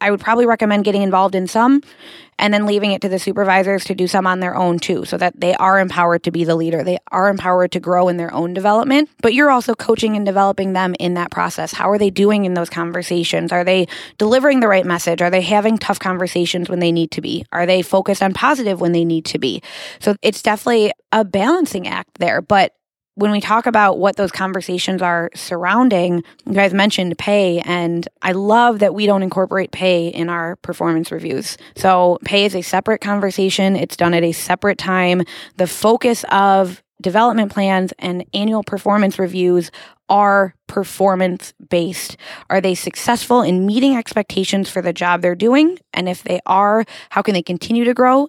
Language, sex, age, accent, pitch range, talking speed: English, female, 20-39, American, 180-210 Hz, 200 wpm